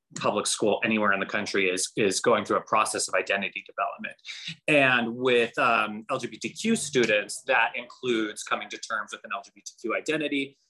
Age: 20-39